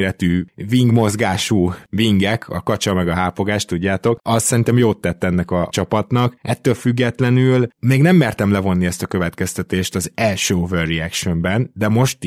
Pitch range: 95-115 Hz